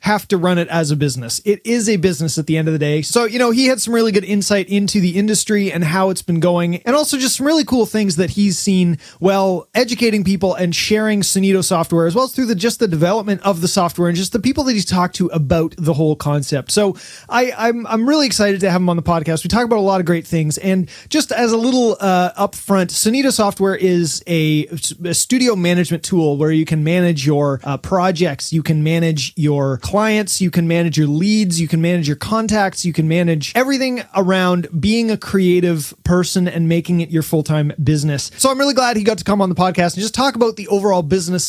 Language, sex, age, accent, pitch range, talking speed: English, male, 30-49, American, 165-210 Hz, 240 wpm